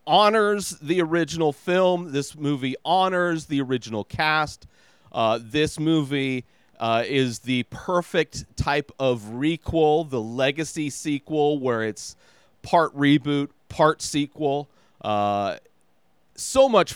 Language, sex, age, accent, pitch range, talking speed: English, male, 30-49, American, 115-155 Hz, 115 wpm